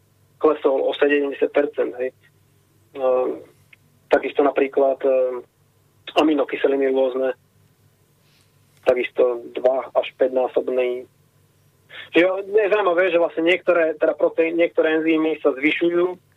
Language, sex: Slovak, male